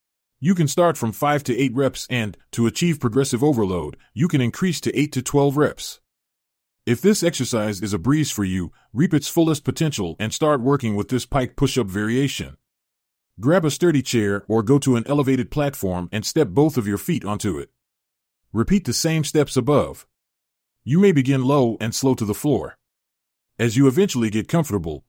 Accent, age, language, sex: American, 40-59, English, male